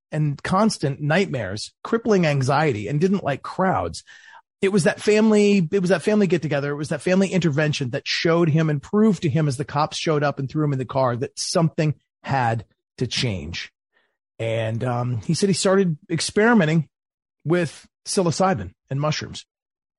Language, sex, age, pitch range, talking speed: English, male, 30-49, 140-190 Hz, 175 wpm